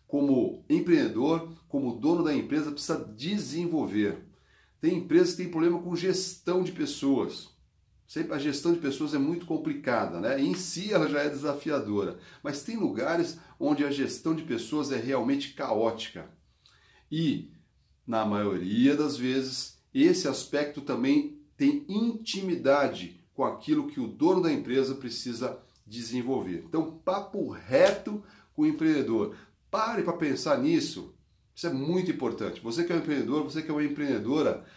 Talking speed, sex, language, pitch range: 150 wpm, male, Portuguese, 140-220 Hz